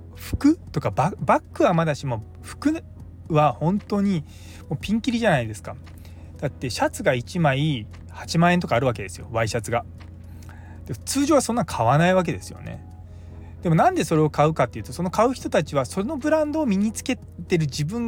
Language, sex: Japanese, male